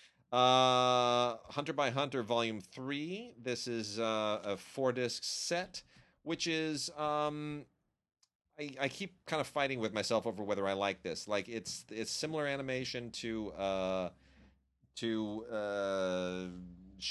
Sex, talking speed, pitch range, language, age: male, 135 wpm, 95-135 Hz, English, 30-49